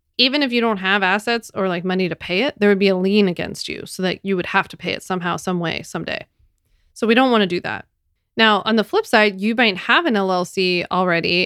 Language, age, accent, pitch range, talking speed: English, 20-39, American, 180-215 Hz, 255 wpm